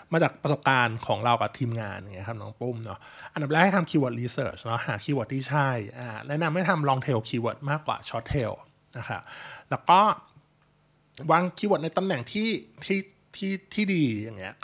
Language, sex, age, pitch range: Thai, male, 20-39, 120-155 Hz